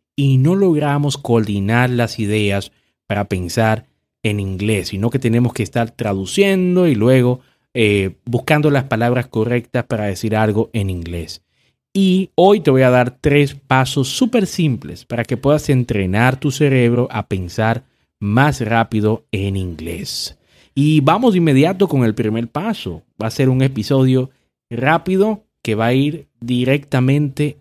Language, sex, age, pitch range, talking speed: Spanish, male, 30-49, 110-155 Hz, 150 wpm